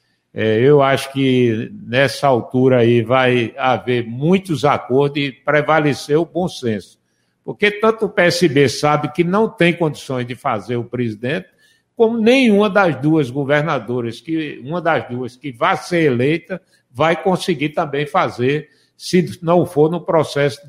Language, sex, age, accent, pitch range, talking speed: Portuguese, male, 60-79, Brazilian, 125-175 Hz, 140 wpm